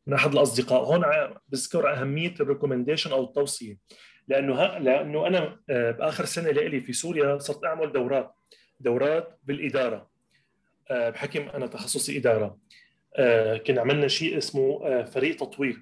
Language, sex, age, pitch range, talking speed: Arabic, male, 30-49, 125-165 Hz, 120 wpm